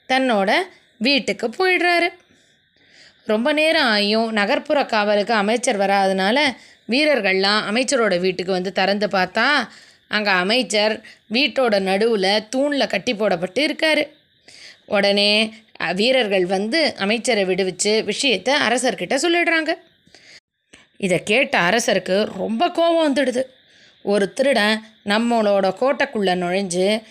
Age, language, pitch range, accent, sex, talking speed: 20-39, Tamil, 200-275 Hz, native, female, 95 wpm